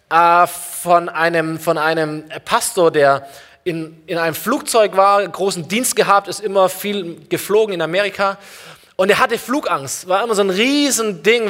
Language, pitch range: German, 185-235 Hz